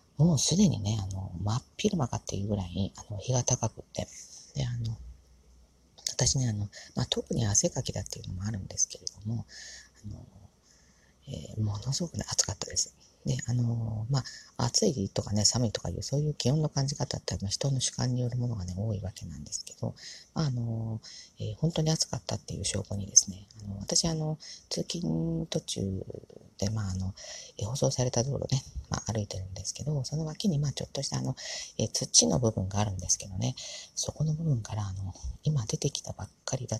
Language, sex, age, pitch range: Japanese, female, 40-59, 100-130 Hz